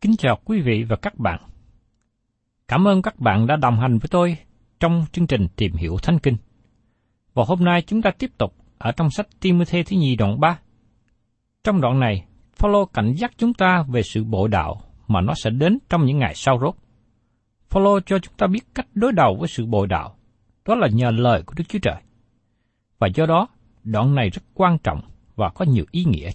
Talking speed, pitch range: 210 wpm, 115-180 Hz